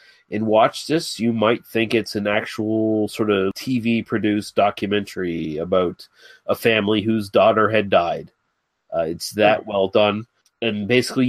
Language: English